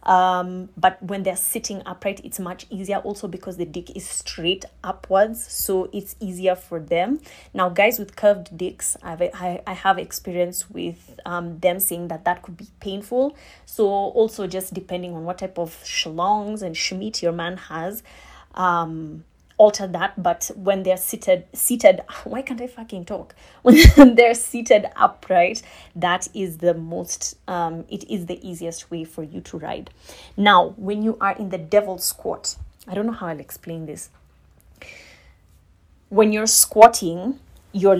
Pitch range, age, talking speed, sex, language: 175-205 Hz, 20-39, 165 wpm, female, English